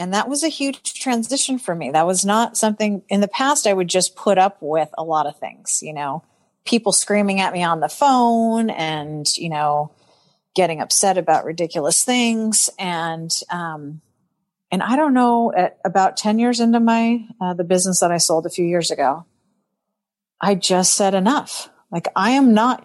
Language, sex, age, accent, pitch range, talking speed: English, female, 40-59, American, 180-230 Hz, 190 wpm